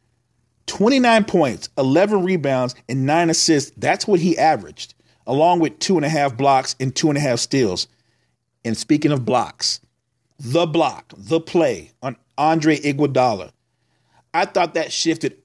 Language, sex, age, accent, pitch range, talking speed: English, male, 40-59, American, 120-180 Hz, 130 wpm